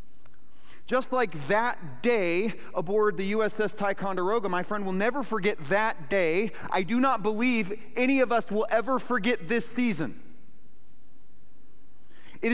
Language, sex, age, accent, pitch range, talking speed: English, male, 40-59, American, 170-230 Hz, 135 wpm